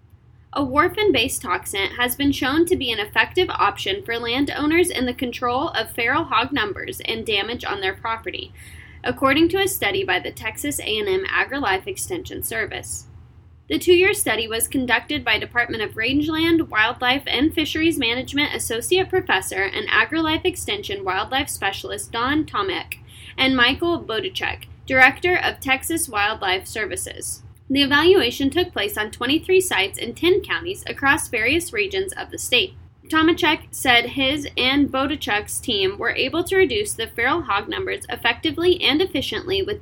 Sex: female